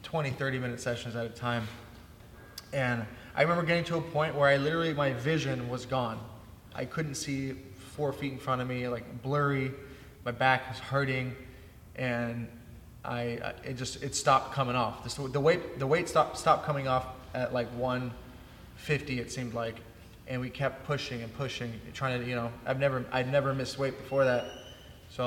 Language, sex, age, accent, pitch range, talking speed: English, male, 20-39, American, 120-135 Hz, 185 wpm